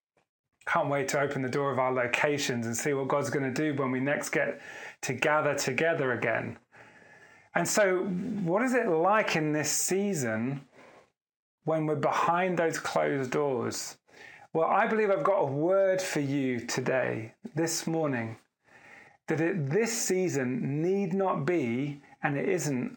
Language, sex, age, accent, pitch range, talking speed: English, male, 30-49, British, 140-180 Hz, 155 wpm